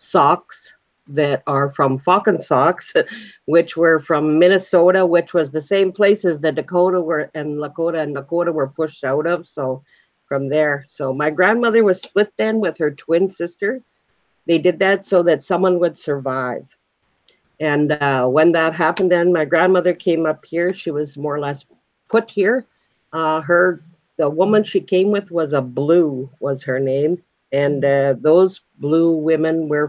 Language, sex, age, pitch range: English, female, 50-69, 145-180 Hz